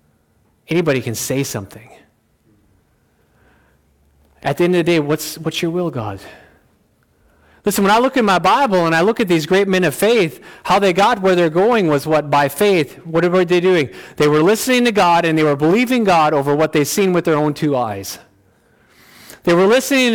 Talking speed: 200 wpm